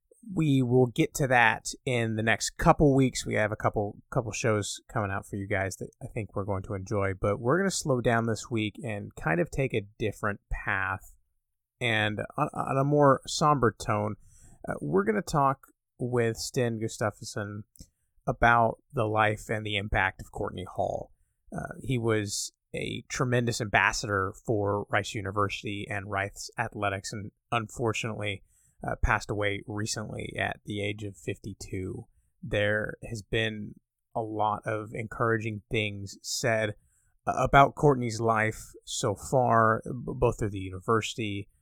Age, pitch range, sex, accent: 30-49, 100-125 Hz, male, American